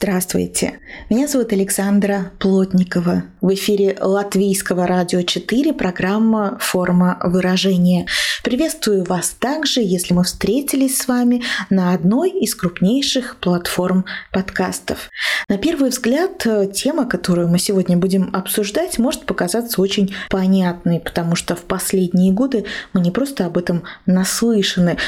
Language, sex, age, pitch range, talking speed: Russian, female, 20-39, 185-235 Hz, 120 wpm